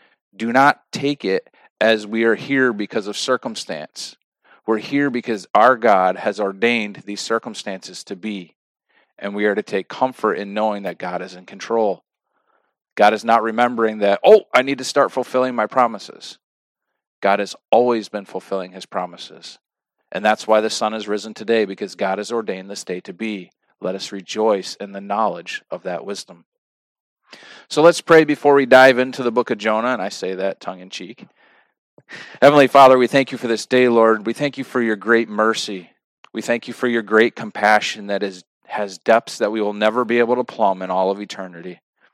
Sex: male